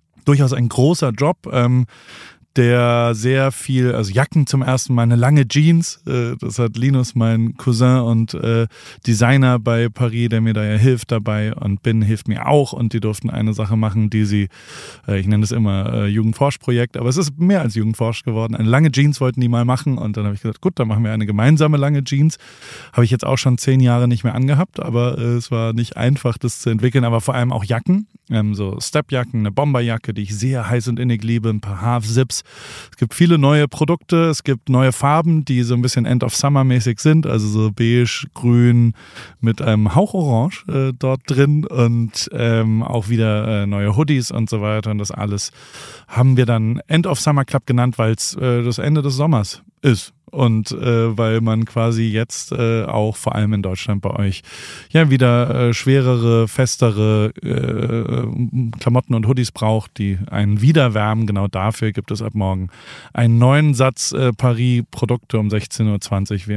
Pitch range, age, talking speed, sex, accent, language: 110-130 Hz, 30-49, 190 wpm, male, German, German